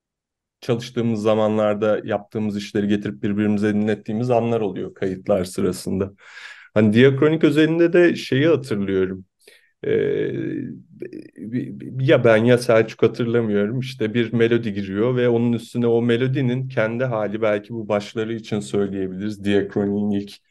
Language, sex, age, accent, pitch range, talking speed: Turkish, male, 30-49, native, 110-130 Hz, 115 wpm